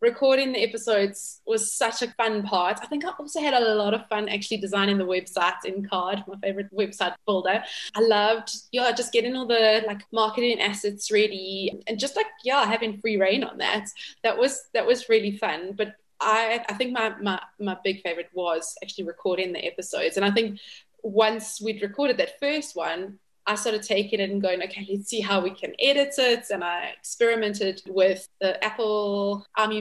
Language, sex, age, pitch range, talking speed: English, female, 20-39, 200-235 Hz, 195 wpm